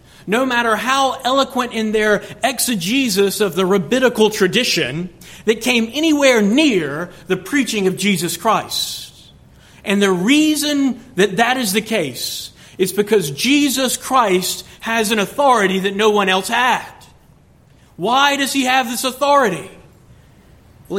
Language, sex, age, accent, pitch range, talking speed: English, male, 40-59, American, 165-235 Hz, 135 wpm